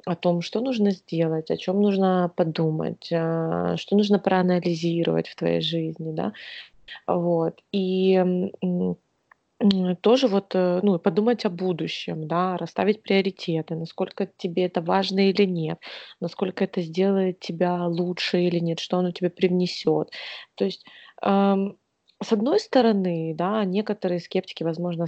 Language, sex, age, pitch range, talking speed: Russian, female, 20-39, 175-205 Hz, 125 wpm